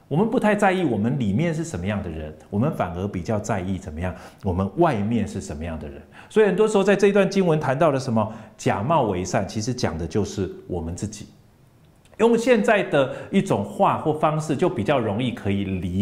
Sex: male